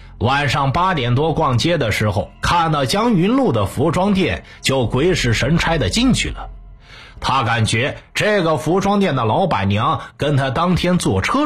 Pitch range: 115-180 Hz